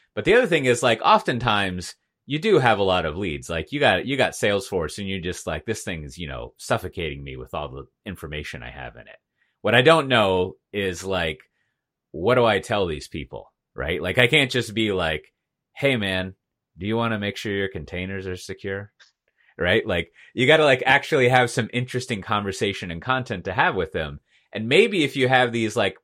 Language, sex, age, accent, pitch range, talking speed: English, male, 30-49, American, 85-120 Hz, 215 wpm